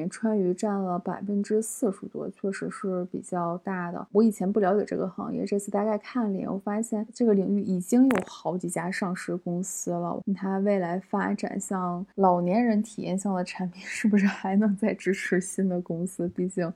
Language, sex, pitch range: Chinese, female, 190-215 Hz